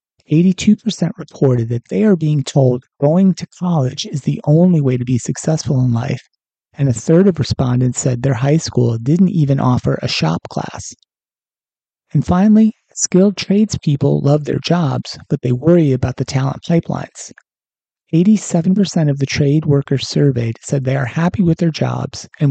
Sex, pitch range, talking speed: male, 130-170 Hz, 165 wpm